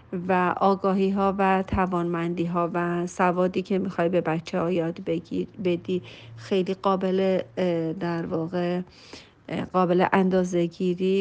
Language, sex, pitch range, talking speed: Persian, female, 175-195 Hz, 105 wpm